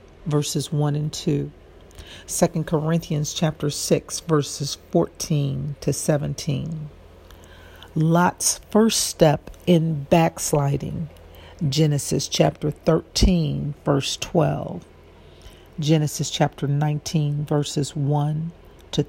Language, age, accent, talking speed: English, 50-69, American, 90 wpm